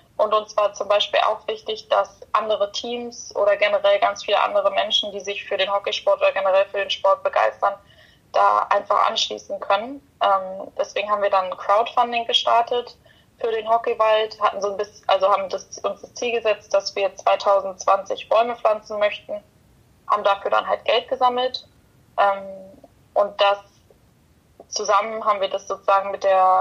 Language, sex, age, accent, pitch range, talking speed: German, female, 10-29, German, 200-250 Hz, 160 wpm